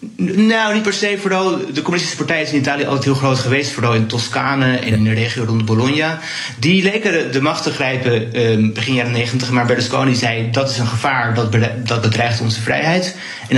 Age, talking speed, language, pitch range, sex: 30-49, 210 wpm, Dutch, 115-135 Hz, male